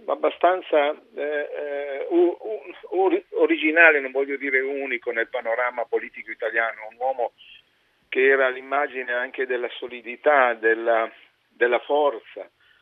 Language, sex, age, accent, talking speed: Italian, male, 50-69, native, 115 wpm